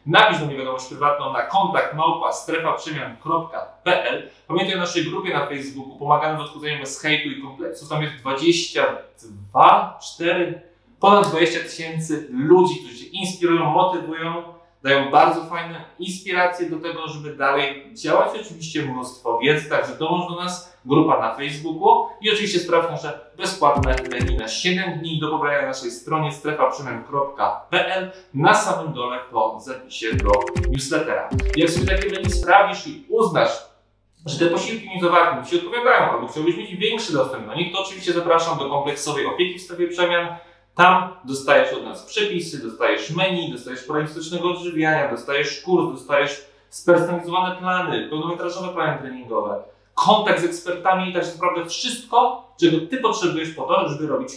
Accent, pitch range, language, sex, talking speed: native, 150-185 Hz, Polish, male, 150 wpm